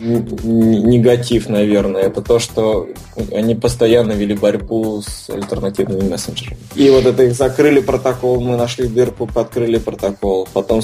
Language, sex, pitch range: Russian, male, 105-120 Hz